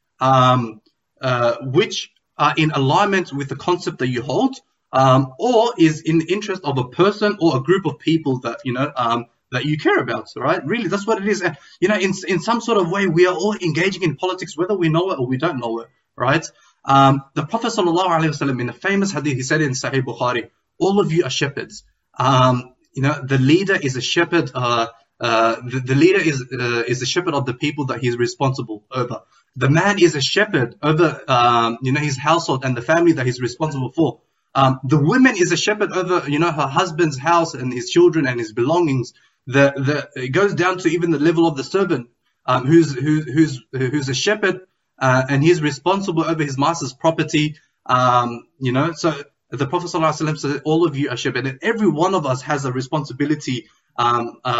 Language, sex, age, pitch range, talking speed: English, male, 20-39, 130-170 Hz, 215 wpm